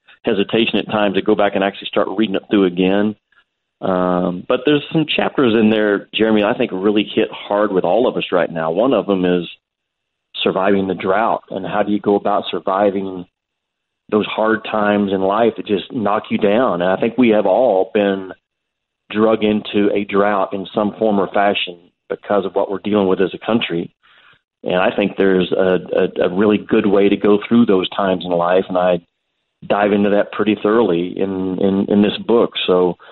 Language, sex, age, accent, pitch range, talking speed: English, male, 40-59, American, 95-105 Hz, 200 wpm